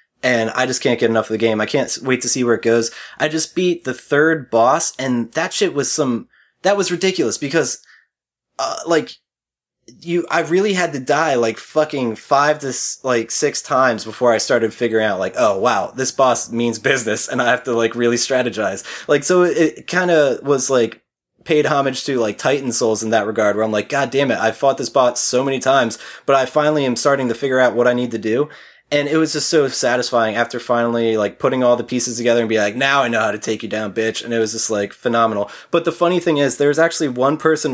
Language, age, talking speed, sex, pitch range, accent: English, 20-39, 240 wpm, male, 115-150 Hz, American